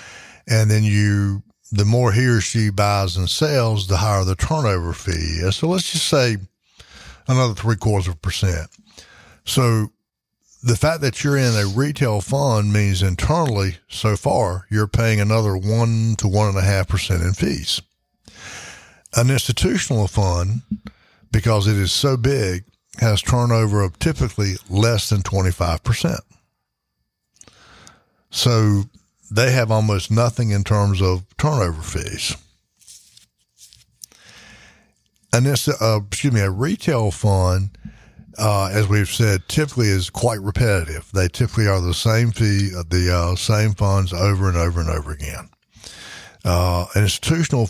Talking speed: 135 wpm